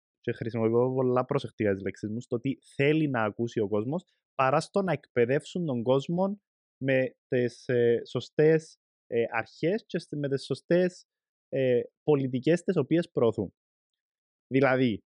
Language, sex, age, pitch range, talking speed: Greek, male, 20-39, 115-150 Hz, 145 wpm